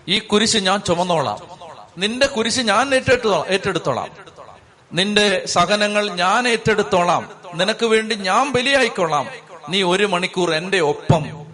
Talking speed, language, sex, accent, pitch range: 115 wpm, Malayalam, male, native, 150-180 Hz